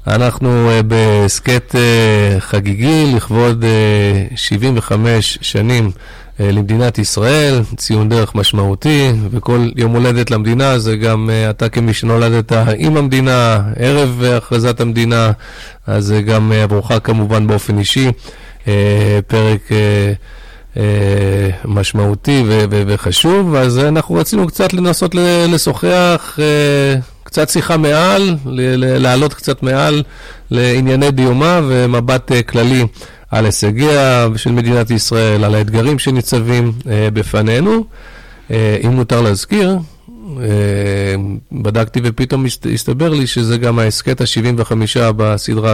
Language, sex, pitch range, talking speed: Hebrew, male, 105-130 Hz, 115 wpm